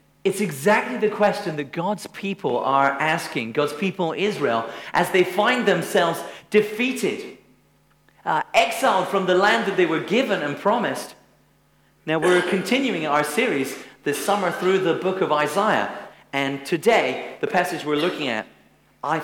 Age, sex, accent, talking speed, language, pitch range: 40-59, male, British, 150 wpm, English, 130-195 Hz